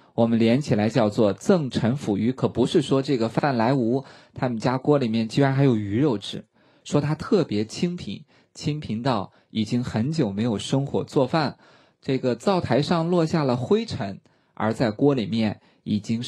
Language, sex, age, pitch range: Chinese, male, 20-39, 110-145 Hz